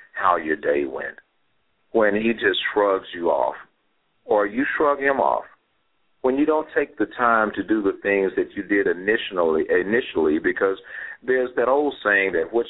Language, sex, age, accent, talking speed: English, male, 50-69, American, 175 wpm